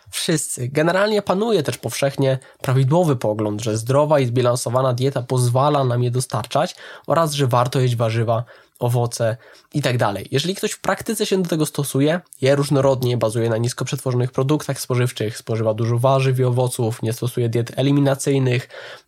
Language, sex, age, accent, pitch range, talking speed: Polish, male, 20-39, native, 125-145 Hz, 155 wpm